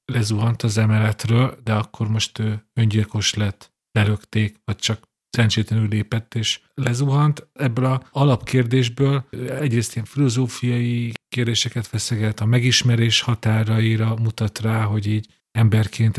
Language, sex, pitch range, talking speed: Hungarian, male, 110-120 Hz, 115 wpm